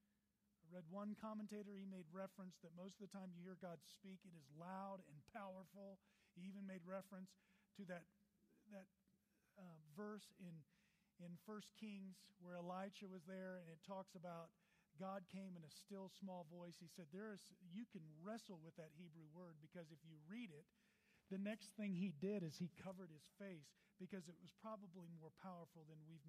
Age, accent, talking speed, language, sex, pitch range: 40-59, American, 185 wpm, English, male, 165-200 Hz